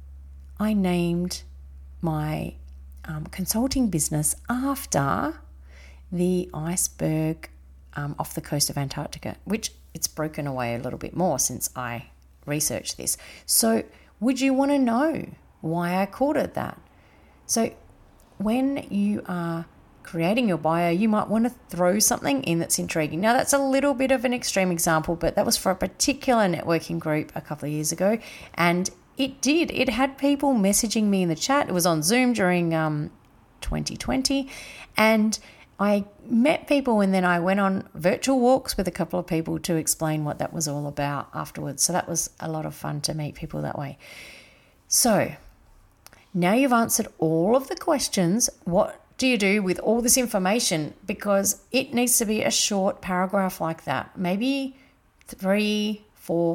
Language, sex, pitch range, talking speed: English, female, 155-230 Hz, 170 wpm